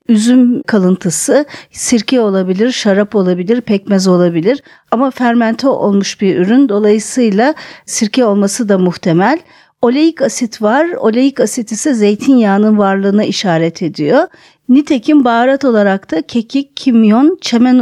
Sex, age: female, 50-69